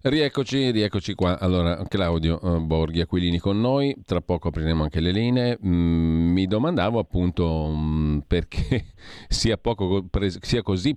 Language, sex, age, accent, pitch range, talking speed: Italian, male, 40-59, native, 80-105 Hz, 125 wpm